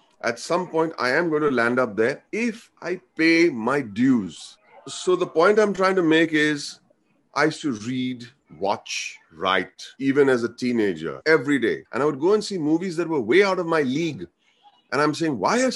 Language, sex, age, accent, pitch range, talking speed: English, male, 30-49, Indian, 130-180 Hz, 205 wpm